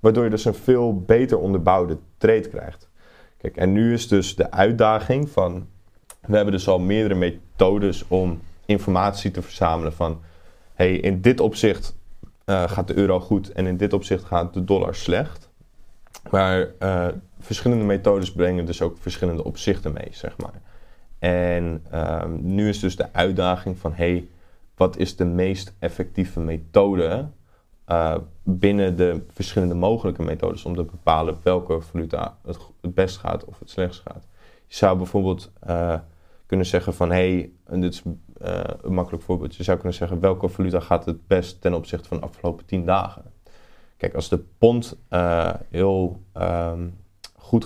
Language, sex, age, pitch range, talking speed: Dutch, male, 20-39, 85-95 Hz, 155 wpm